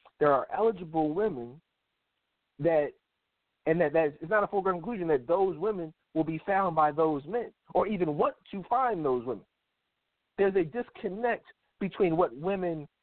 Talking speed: 165 wpm